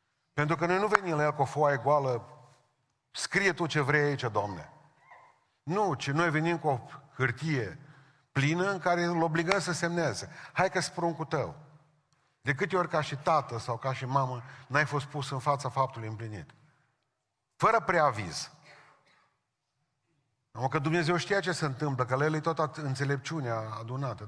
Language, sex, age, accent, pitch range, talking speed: Romanian, male, 40-59, native, 135-170 Hz, 165 wpm